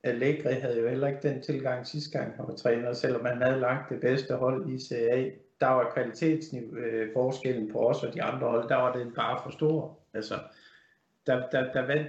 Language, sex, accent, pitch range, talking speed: Danish, male, native, 120-145 Hz, 210 wpm